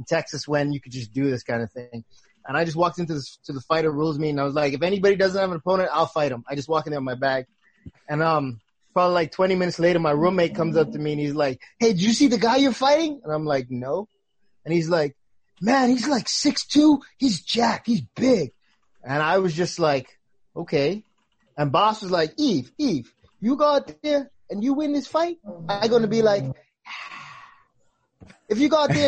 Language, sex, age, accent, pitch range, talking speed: English, male, 20-39, American, 150-230 Hz, 230 wpm